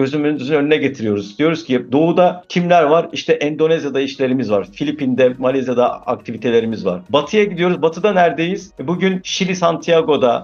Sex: male